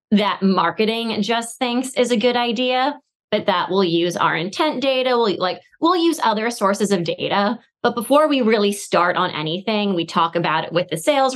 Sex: female